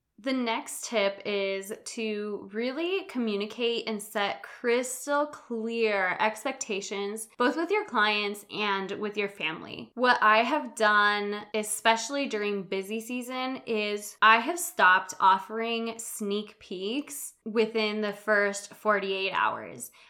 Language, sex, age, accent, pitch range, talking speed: English, female, 10-29, American, 200-235 Hz, 120 wpm